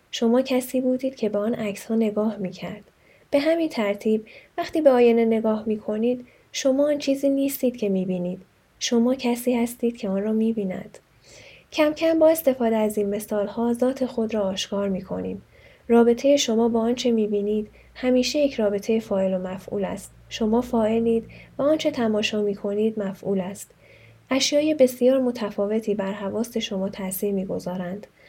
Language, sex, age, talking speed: Persian, female, 10-29, 160 wpm